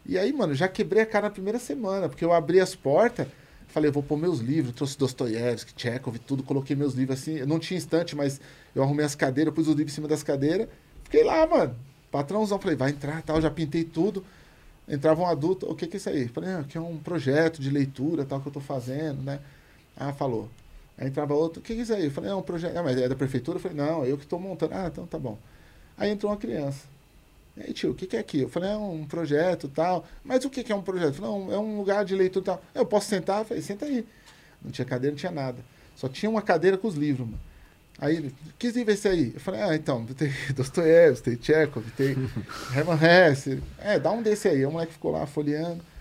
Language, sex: Portuguese, male